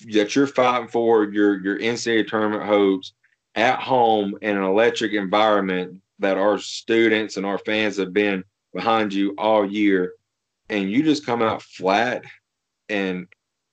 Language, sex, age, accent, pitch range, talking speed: English, male, 30-49, American, 100-115 Hz, 150 wpm